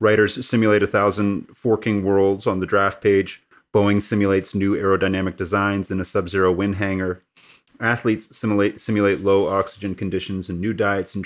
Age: 30-49